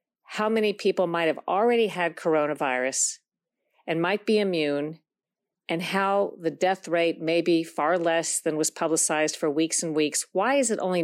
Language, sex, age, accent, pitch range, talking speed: English, female, 50-69, American, 155-185 Hz, 175 wpm